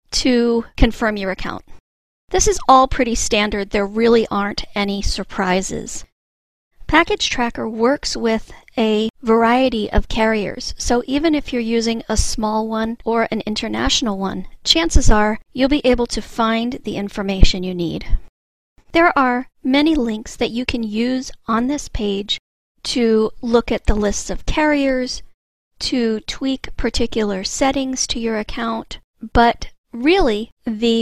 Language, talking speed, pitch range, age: English, 140 wpm, 210-260 Hz, 40-59